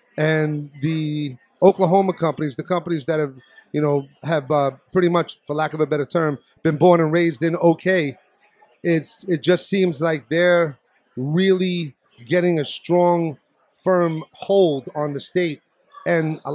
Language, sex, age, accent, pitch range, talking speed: English, male, 30-49, American, 150-185 Hz, 150 wpm